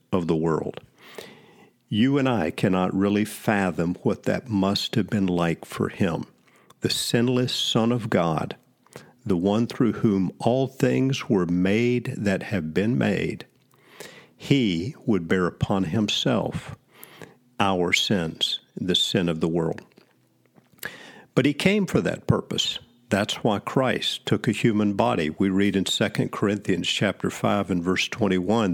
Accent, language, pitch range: American, English, 95-120 Hz